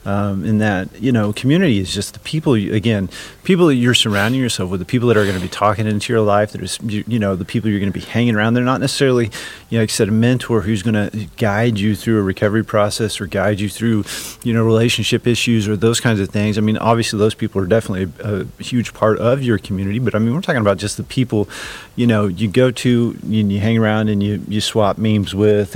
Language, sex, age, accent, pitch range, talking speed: English, male, 30-49, American, 100-115 Hz, 260 wpm